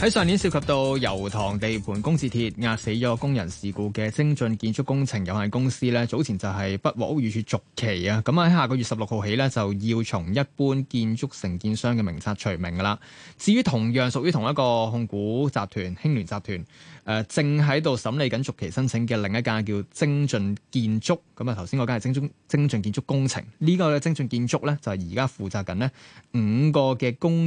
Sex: male